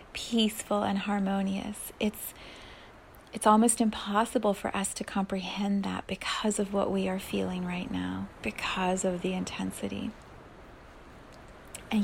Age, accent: 30-49, American